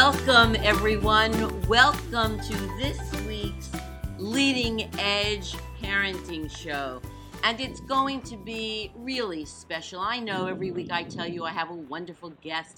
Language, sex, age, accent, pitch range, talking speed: English, female, 50-69, American, 170-215 Hz, 135 wpm